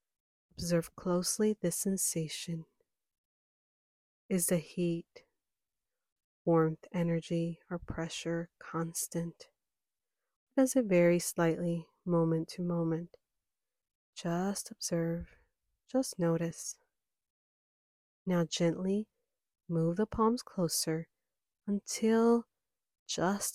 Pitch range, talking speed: 170-200 Hz, 80 wpm